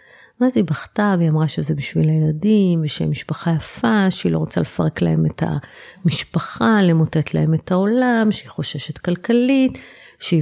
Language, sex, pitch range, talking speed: Hebrew, female, 155-205 Hz, 150 wpm